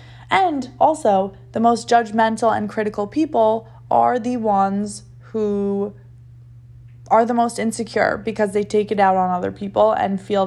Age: 20-39